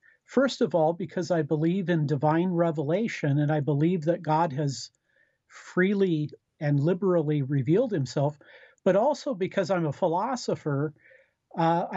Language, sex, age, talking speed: English, male, 50-69, 135 wpm